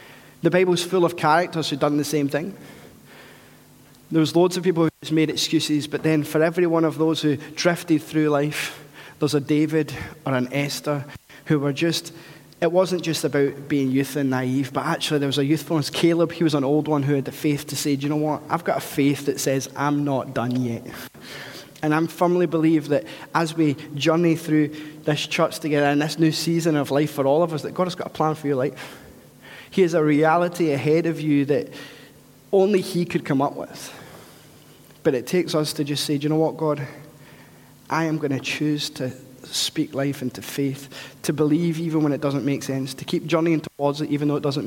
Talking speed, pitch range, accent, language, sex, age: 220 wpm, 145-160 Hz, British, English, male, 20-39